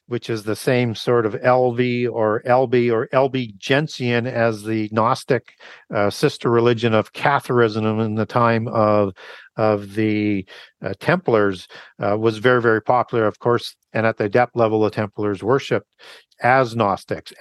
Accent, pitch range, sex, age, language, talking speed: American, 110-130 Hz, male, 50-69, English, 160 wpm